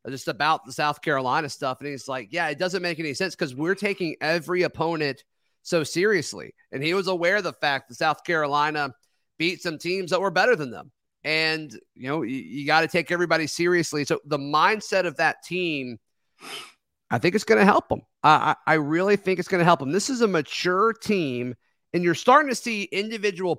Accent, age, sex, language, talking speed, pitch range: American, 30-49, male, English, 210 wpm, 155-195 Hz